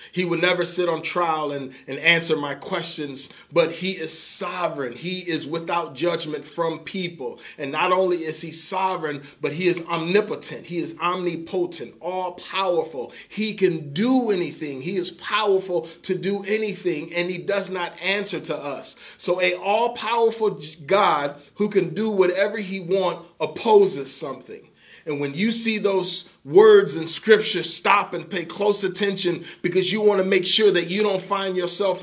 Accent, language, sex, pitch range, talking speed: American, English, male, 165-195 Hz, 165 wpm